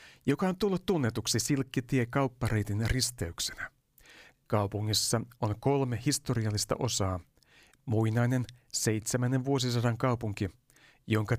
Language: Finnish